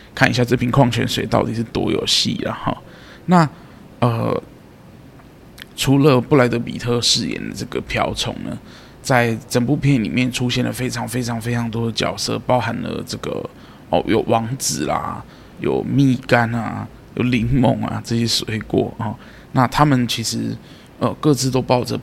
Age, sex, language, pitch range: 20-39, male, Chinese, 115-130 Hz